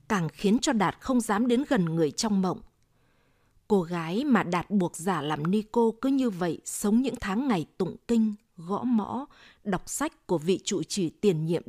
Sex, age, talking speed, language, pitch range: female, 20-39, 195 wpm, Vietnamese, 180-230 Hz